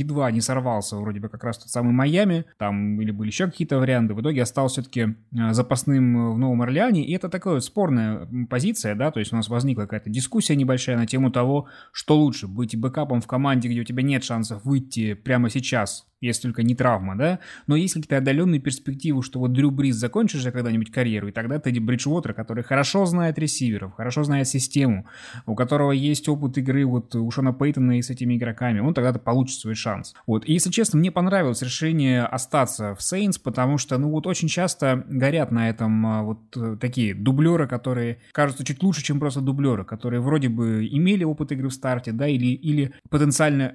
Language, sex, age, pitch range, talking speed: Russian, male, 20-39, 120-145 Hz, 195 wpm